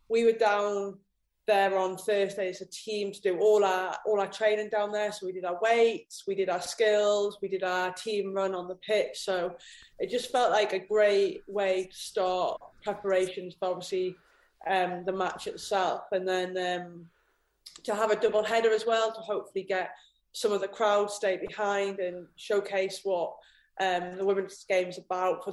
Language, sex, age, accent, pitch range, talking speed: English, female, 20-39, British, 185-220 Hz, 190 wpm